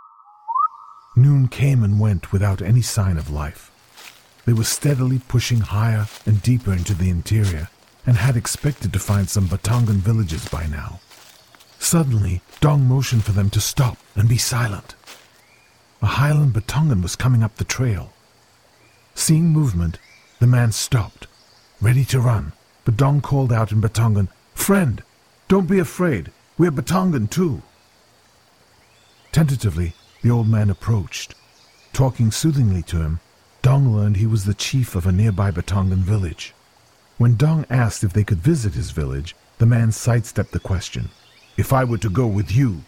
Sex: male